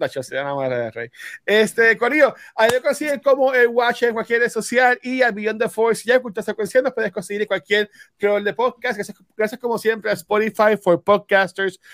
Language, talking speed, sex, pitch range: Spanish, 200 wpm, male, 195-255 Hz